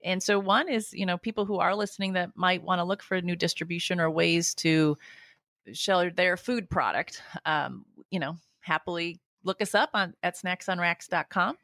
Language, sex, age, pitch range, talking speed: English, female, 30-49, 155-185 Hz, 185 wpm